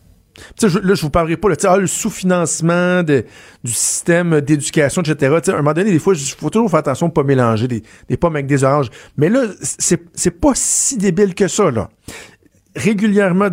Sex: male